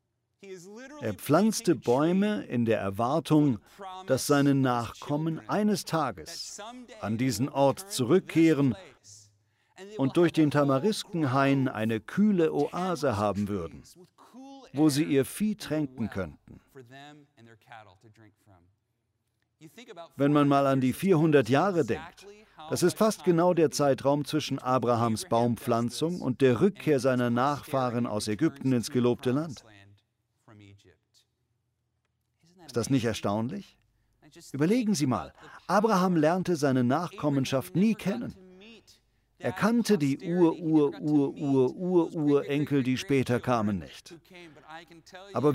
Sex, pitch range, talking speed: male, 120-170 Hz, 110 wpm